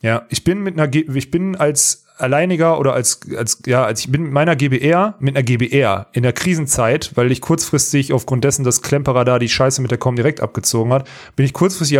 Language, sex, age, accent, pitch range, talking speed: German, male, 30-49, German, 125-165 Hz, 220 wpm